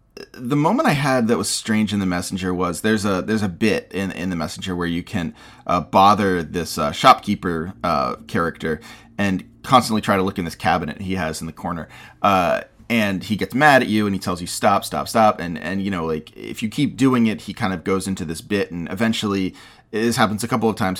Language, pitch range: English, 95-120 Hz